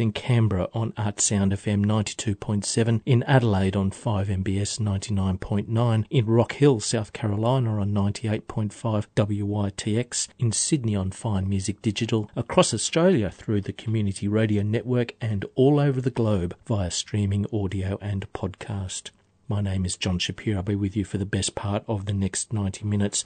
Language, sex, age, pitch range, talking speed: English, male, 40-59, 105-120 Hz, 155 wpm